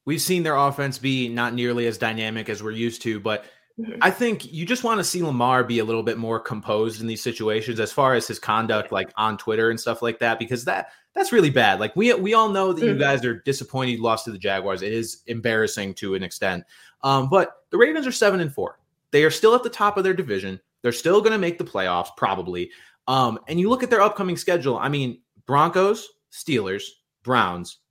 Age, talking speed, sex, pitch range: 20-39, 230 wpm, male, 115-185 Hz